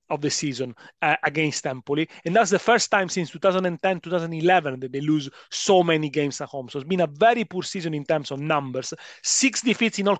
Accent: Italian